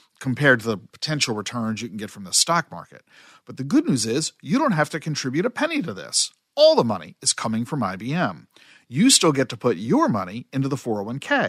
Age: 50-69